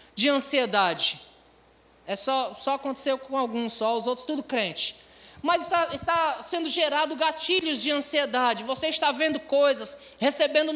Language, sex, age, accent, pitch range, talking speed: Portuguese, male, 20-39, Brazilian, 250-310 Hz, 145 wpm